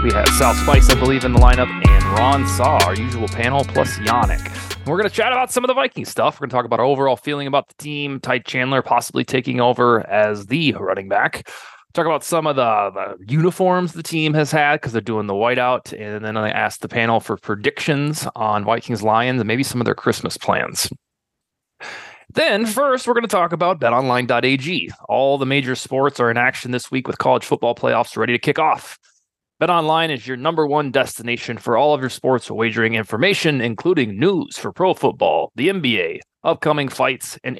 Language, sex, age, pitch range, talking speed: English, male, 20-39, 115-155 Hz, 205 wpm